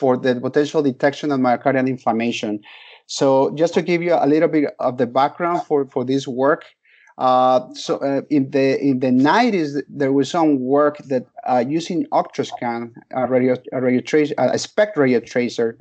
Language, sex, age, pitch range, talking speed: English, male, 30-49, 130-150 Hz, 175 wpm